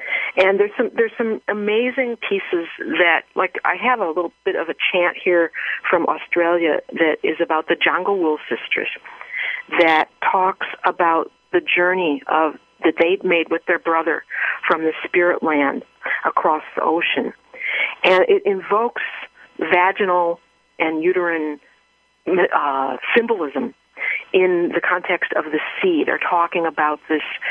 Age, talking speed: 50-69, 140 wpm